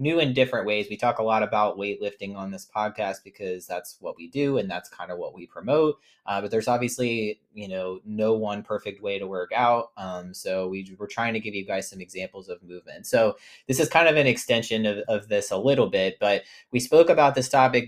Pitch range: 100-125 Hz